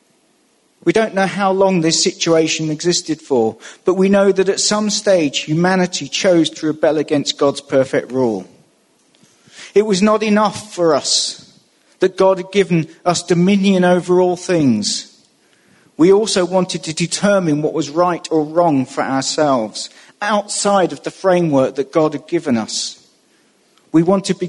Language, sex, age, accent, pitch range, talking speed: English, male, 40-59, British, 140-180 Hz, 150 wpm